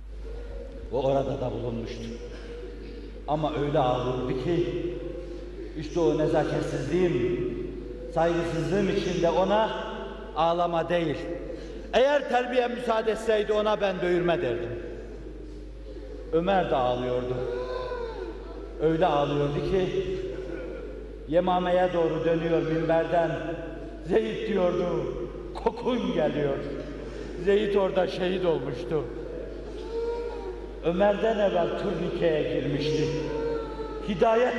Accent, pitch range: native, 170-255 Hz